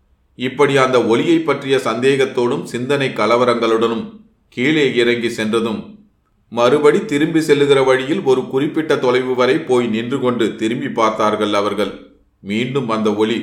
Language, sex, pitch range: Tamil, male, 110-135 Hz